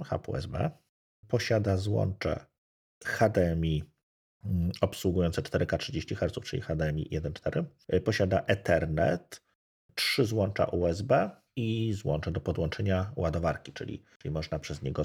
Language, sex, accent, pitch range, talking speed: Polish, male, native, 80-100 Hz, 110 wpm